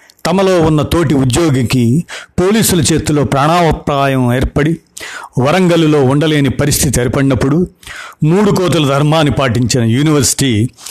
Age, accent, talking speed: 60-79, native, 95 wpm